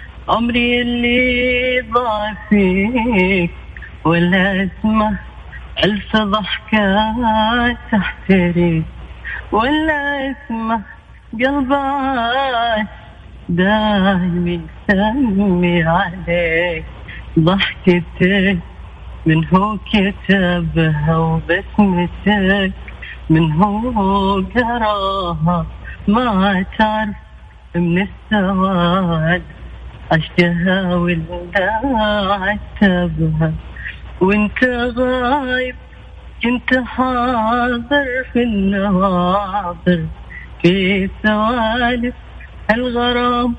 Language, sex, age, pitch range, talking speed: Arabic, female, 30-49, 175-235 Hz, 55 wpm